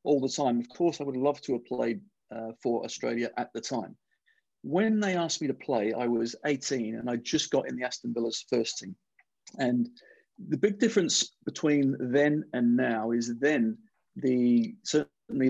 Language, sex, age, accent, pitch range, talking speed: English, male, 40-59, British, 120-155 Hz, 185 wpm